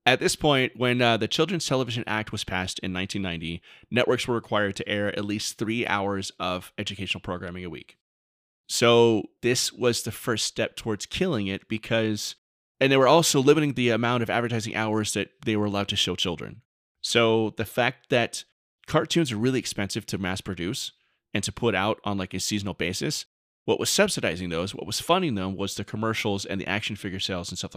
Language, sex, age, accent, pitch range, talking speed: English, male, 30-49, American, 100-125 Hz, 200 wpm